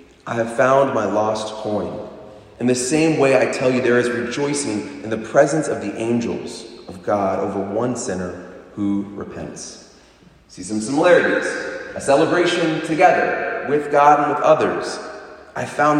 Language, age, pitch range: English, 30-49, 110-175 Hz